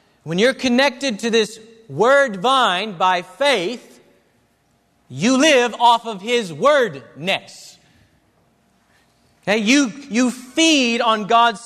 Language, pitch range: English, 180-250 Hz